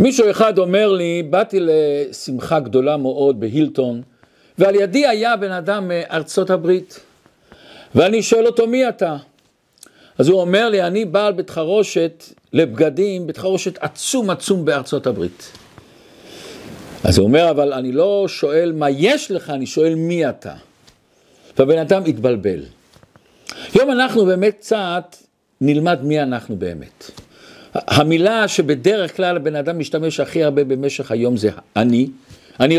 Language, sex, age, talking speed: Hebrew, male, 50-69, 135 wpm